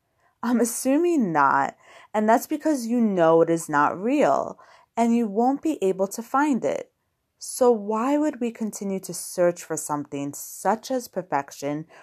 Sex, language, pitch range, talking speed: female, English, 160-240 Hz, 160 wpm